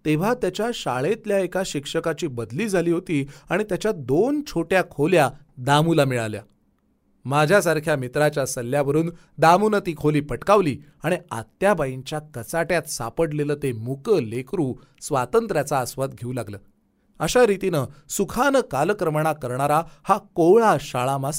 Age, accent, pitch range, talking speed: 30-49, native, 145-205 Hz, 115 wpm